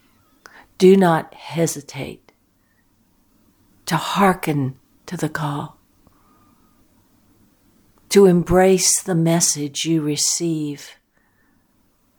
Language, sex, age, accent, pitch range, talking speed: English, female, 60-79, American, 120-175 Hz, 70 wpm